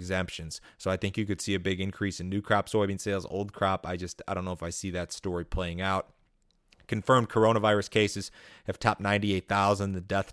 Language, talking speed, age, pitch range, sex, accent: English, 215 wpm, 30-49, 90-105 Hz, male, American